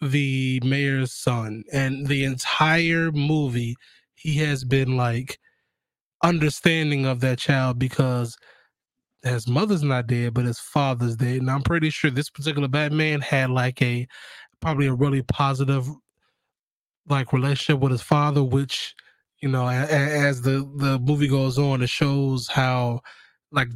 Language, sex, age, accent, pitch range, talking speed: English, male, 20-39, American, 125-150 Hz, 145 wpm